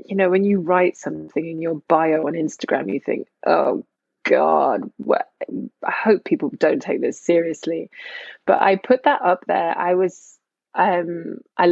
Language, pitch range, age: English, 155-185 Hz, 20-39